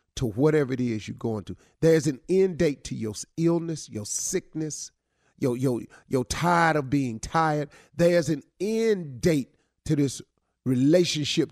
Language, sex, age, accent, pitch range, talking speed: English, male, 40-59, American, 115-160 Hz, 155 wpm